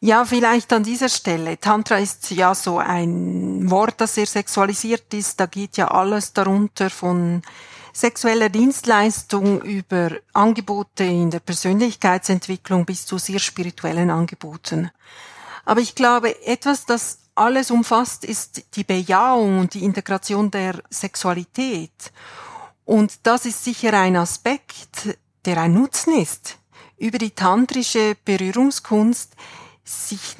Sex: female